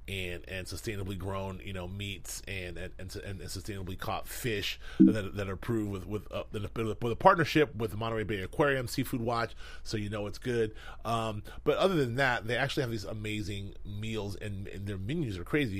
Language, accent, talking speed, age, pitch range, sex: English, American, 200 wpm, 30-49, 100-125 Hz, male